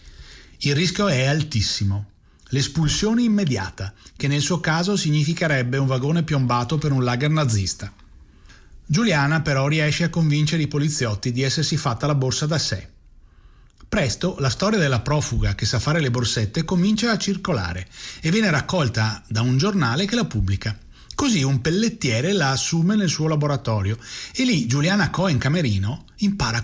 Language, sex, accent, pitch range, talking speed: Italian, male, native, 110-165 Hz, 155 wpm